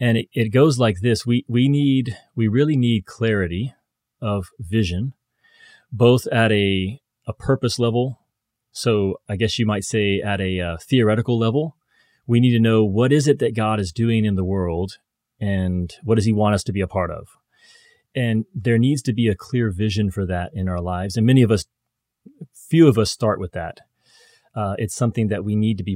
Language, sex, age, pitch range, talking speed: English, male, 30-49, 100-125 Hz, 205 wpm